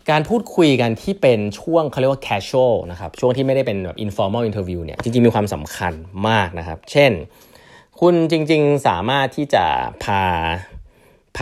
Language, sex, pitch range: Thai, male, 95-140 Hz